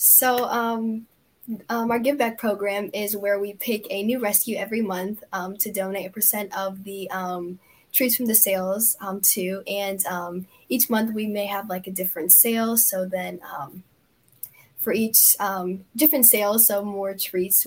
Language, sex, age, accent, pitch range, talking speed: English, female, 10-29, American, 190-215 Hz, 175 wpm